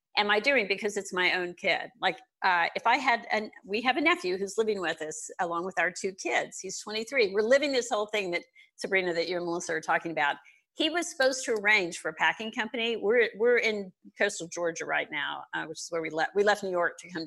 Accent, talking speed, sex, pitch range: American, 245 wpm, female, 180-260 Hz